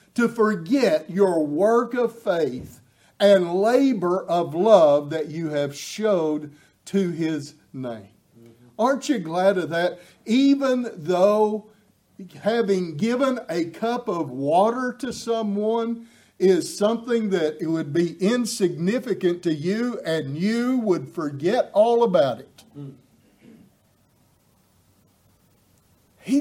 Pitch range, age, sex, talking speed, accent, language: 170-235 Hz, 50-69, male, 110 wpm, American, English